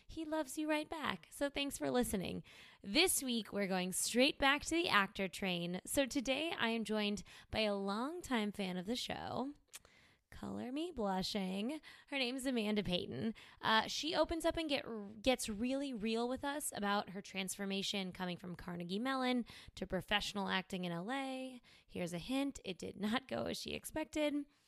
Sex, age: female, 20-39